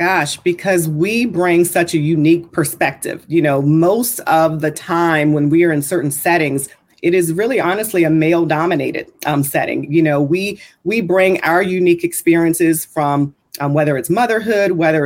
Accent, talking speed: American, 165 wpm